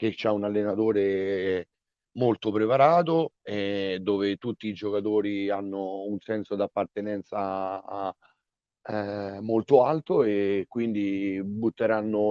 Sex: male